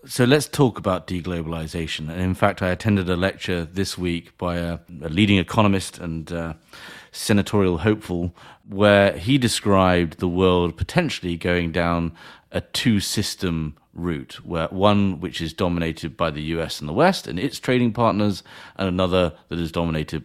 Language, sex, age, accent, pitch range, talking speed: English, male, 40-59, British, 85-100 Hz, 160 wpm